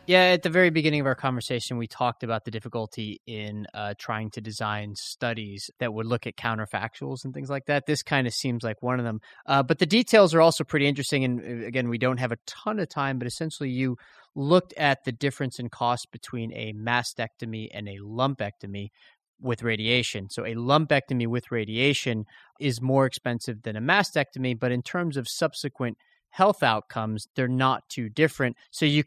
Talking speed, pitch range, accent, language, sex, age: 195 wpm, 110-140 Hz, American, English, male, 30-49